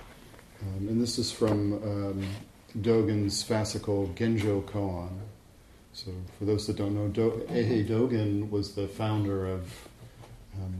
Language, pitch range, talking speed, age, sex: English, 100-115 Hz, 135 wpm, 40-59, male